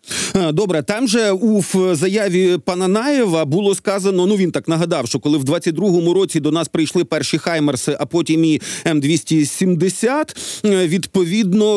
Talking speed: 140 wpm